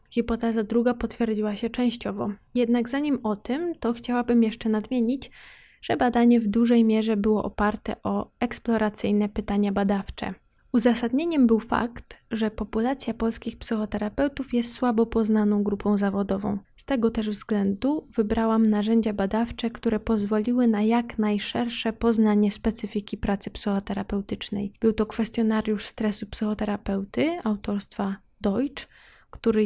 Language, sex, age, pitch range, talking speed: Polish, female, 20-39, 210-230 Hz, 120 wpm